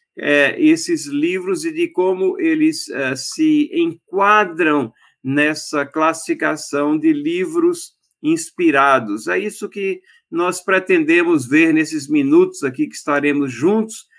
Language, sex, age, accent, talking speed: Portuguese, male, 50-69, Brazilian, 105 wpm